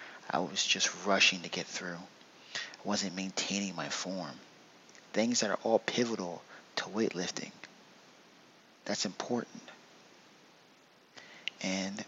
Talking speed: 110 wpm